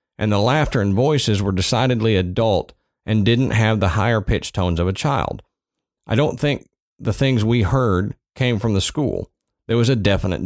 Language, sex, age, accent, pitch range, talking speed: English, male, 40-59, American, 100-125 Hz, 190 wpm